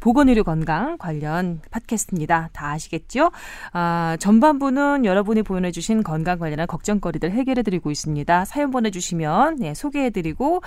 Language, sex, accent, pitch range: Korean, female, native, 165-255 Hz